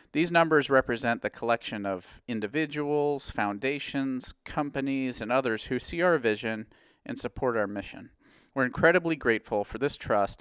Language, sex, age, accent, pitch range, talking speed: English, male, 40-59, American, 105-135 Hz, 145 wpm